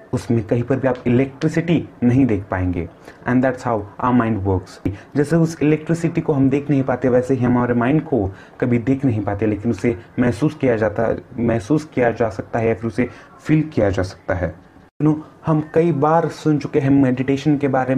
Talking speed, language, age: 190 wpm, Hindi, 30-49